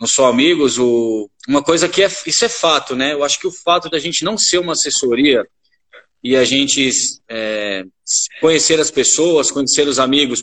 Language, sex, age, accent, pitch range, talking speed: Portuguese, male, 20-39, Brazilian, 145-210 Hz, 185 wpm